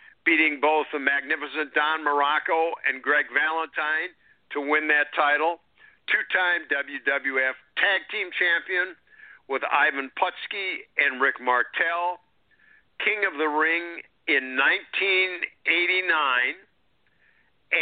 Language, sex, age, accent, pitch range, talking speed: English, male, 50-69, American, 145-180 Hz, 100 wpm